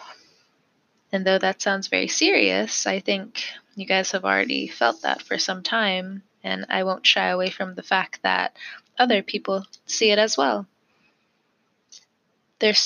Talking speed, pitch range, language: 155 wpm, 200-240 Hz, English